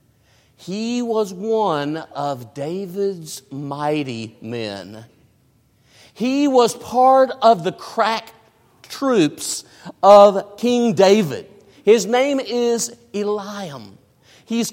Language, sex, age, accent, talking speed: English, male, 50-69, American, 90 wpm